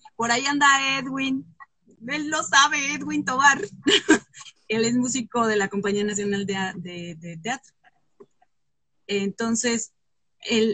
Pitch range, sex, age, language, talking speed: 195-235 Hz, female, 30-49, Spanish, 125 wpm